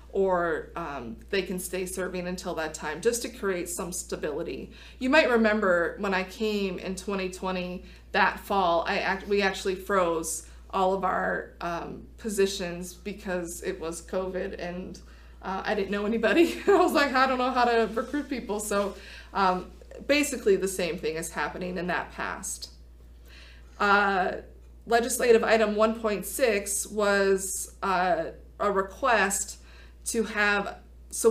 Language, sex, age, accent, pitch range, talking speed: English, female, 30-49, American, 180-215 Hz, 145 wpm